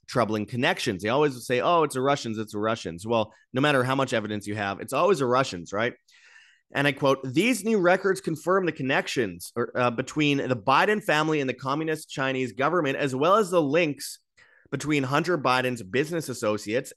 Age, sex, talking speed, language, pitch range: 30-49, male, 190 wpm, English, 125-155 Hz